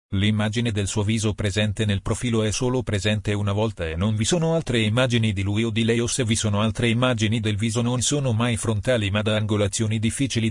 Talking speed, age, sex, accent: 225 wpm, 40-59, male, native